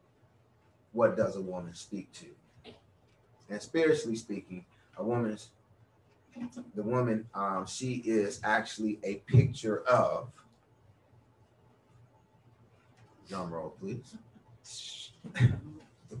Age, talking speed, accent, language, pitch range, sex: 30-49, 90 wpm, American, English, 110-125 Hz, male